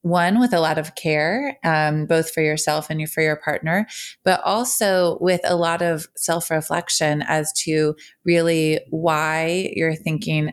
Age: 30-49